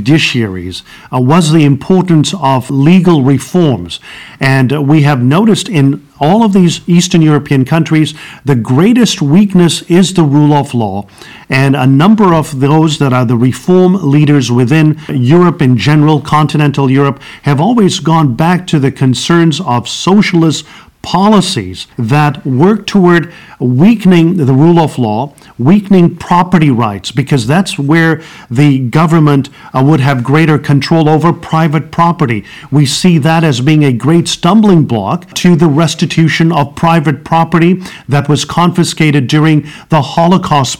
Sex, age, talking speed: male, 50-69, 145 wpm